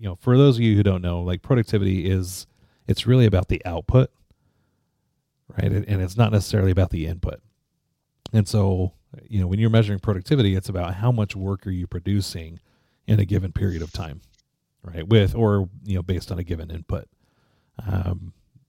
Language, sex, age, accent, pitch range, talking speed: English, male, 30-49, American, 90-110 Hz, 185 wpm